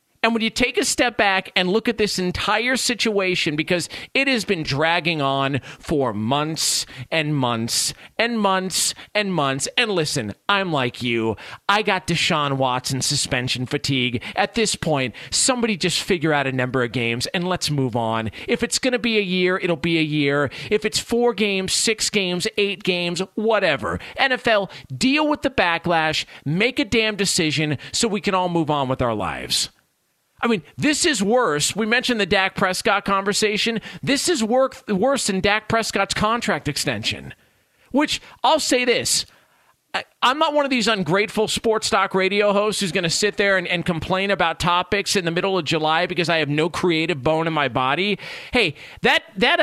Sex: male